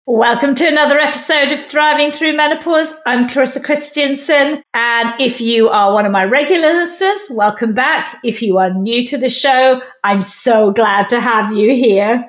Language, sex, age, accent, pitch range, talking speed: English, female, 50-69, British, 220-285 Hz, 175 wpm